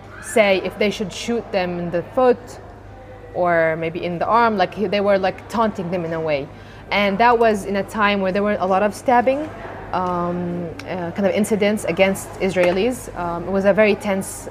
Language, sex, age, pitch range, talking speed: English, female, 20-39, 180-220 Hz, 205 wpm